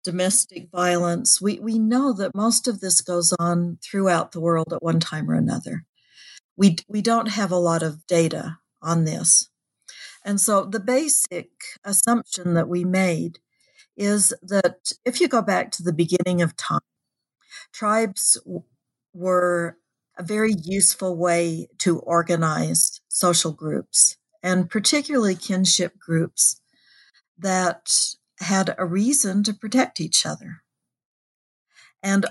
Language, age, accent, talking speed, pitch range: English, 60-79, American, 130 wpm, 170-215 Hz